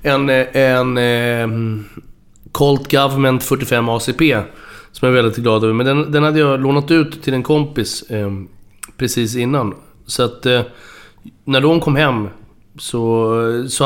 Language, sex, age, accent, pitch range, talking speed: Swedish, male, 30-49, native, 120-150 Hz, 155 wpm